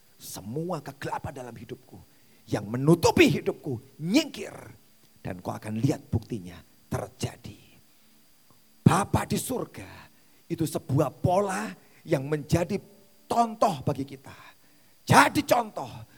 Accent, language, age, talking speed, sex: native, Indonesian, 40-59, 100 wpm, male